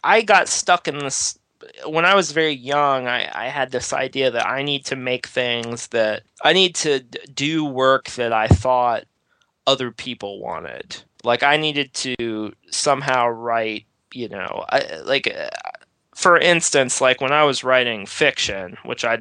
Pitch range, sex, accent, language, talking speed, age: 115-145 Hz, male, American, English, 160 wpm, 20-39